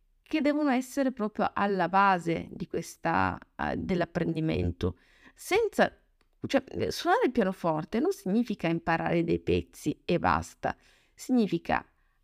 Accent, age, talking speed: native, 30-49, 100 wpm